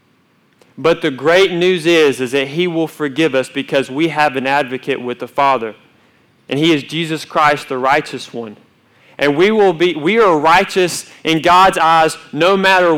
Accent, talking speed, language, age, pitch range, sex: American, 180 wpm, English, 30-49, 145-195 Hz, male